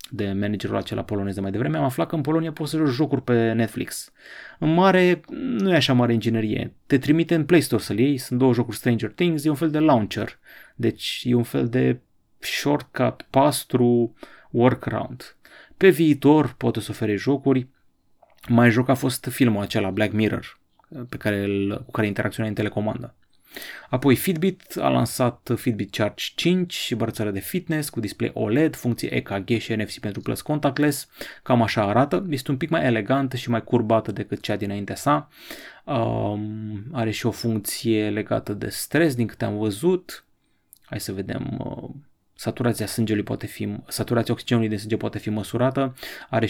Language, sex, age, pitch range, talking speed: Romanian, male, 30-49, 105-140 Hz, 170 wpm